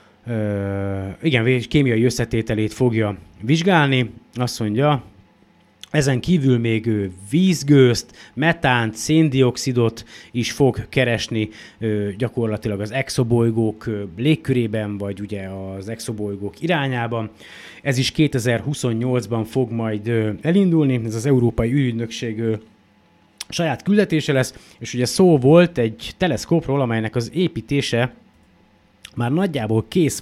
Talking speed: 105 wpm